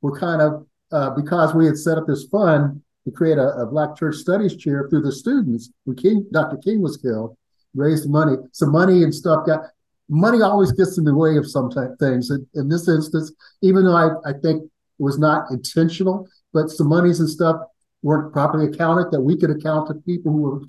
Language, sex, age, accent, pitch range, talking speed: English, male, 50-69, American, 145-175 Hz, 215 wpm